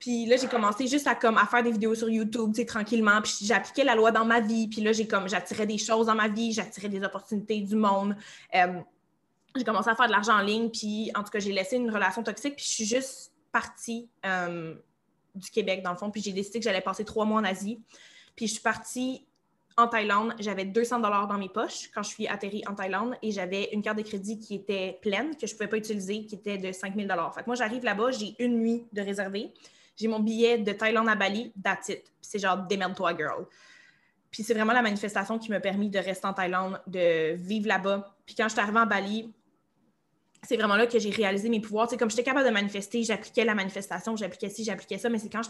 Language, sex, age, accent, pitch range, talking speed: French, female, 20-39, Canadian, 200-230 Hz, 245 wpm